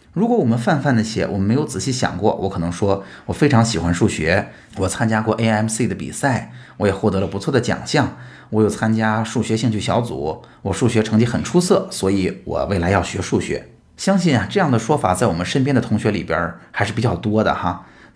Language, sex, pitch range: Chinese, male, 100-135 Hz